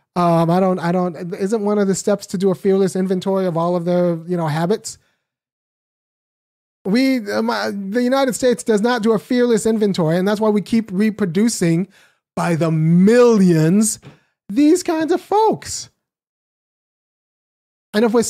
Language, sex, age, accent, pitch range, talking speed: English, male, 30-49, American, 190-250 Hz, 160 wpm